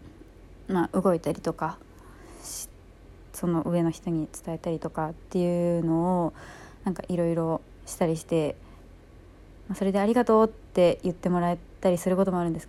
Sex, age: female, 20-39